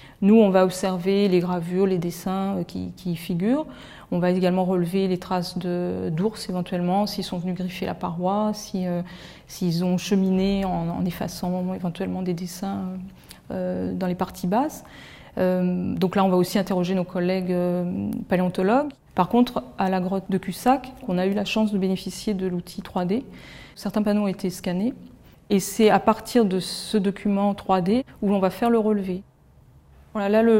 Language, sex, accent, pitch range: French, female, French, 185-210 Hz